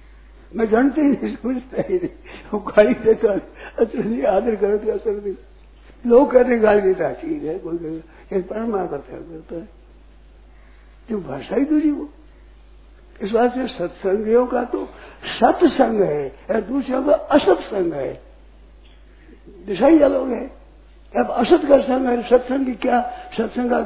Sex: male